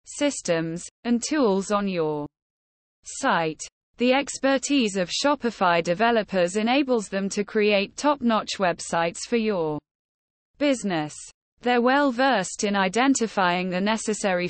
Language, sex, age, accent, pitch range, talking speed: English, female, 20-39, British, 180-250 Hz, 115 wpm